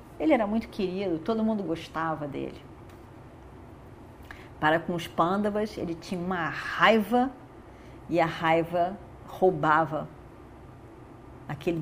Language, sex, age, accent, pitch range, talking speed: Portuguese, female, 40-59, Brazilian, 145-220 Hz, 105 wpm